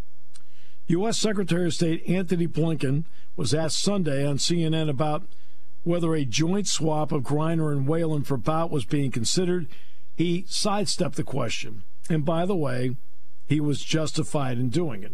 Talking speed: 155 wpm